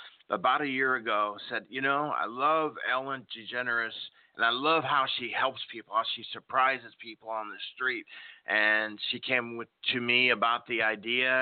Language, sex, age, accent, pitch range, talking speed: English, male, 40-59, American, 115-140 Hz, 180 wpm